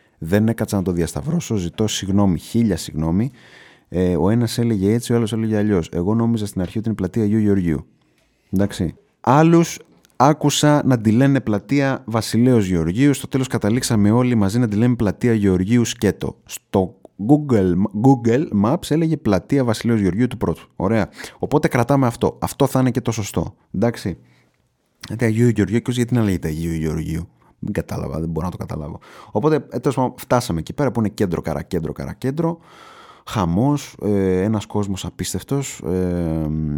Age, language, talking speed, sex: 30-49, Greek, 160 wpm, male